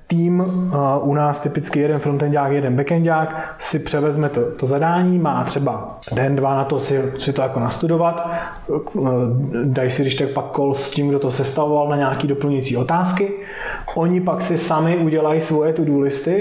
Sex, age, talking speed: male, 20-39, 180 wpm